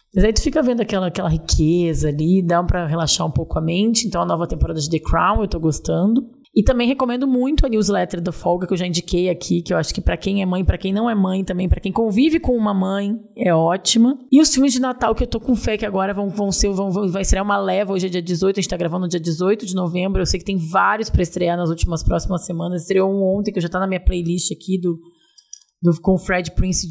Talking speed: 270 wpm